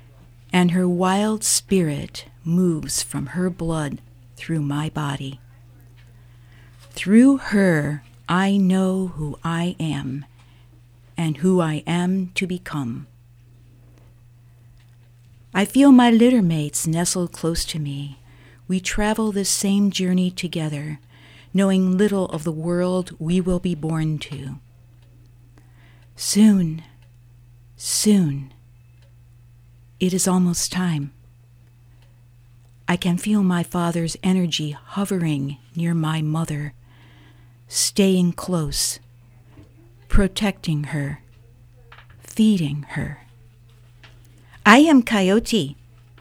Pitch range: 120-180 Hz